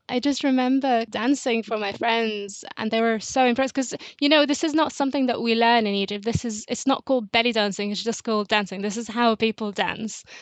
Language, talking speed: English, 230 wpm